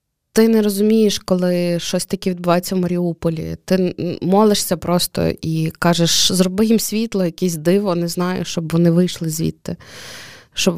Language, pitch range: Ukrainian, 170-195 Hz